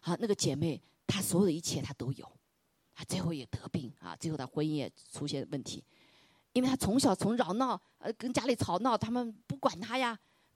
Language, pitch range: Chinese, 145-225 Hz